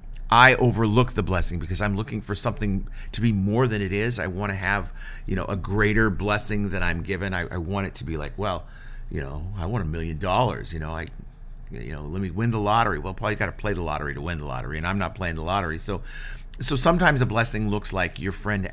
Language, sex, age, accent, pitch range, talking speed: English, male, 50-69, American, 90-120 Hz, 250 wpm